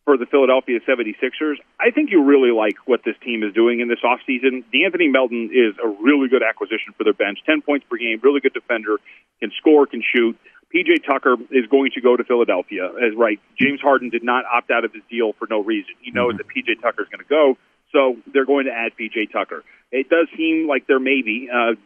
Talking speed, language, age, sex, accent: 230 wpm, English, 40-59, male, American